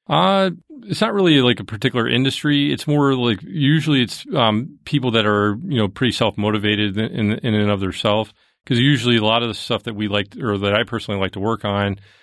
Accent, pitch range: American, 100-115 Hz